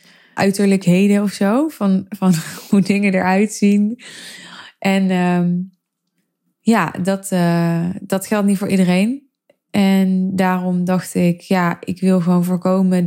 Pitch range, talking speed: 170-195 Hz, 130 wpm